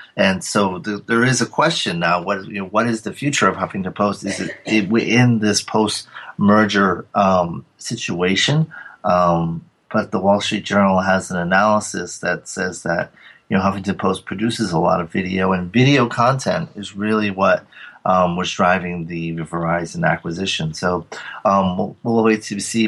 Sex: male